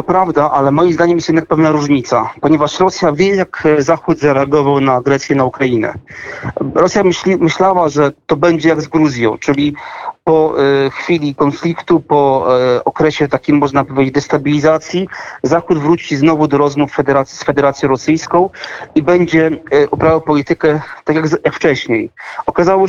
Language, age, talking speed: Polish, 40-59, 150 wpm